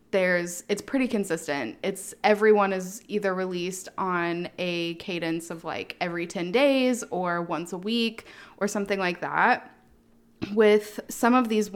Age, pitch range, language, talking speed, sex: 20-39, 180-220 Hz, English, 150 wpm, female